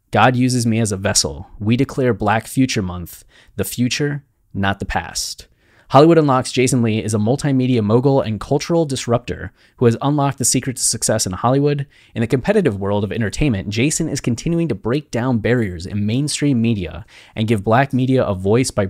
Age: 20-39